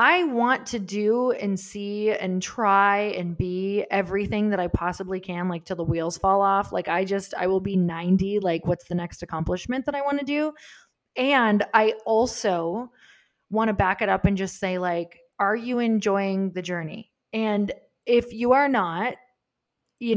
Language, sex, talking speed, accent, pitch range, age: English, female, 180 wpm, American, 190-235 Hz, 20-39